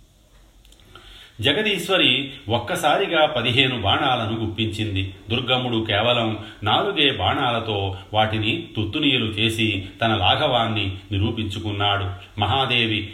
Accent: native